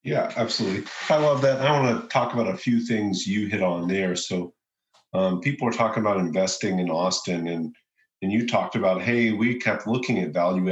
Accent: American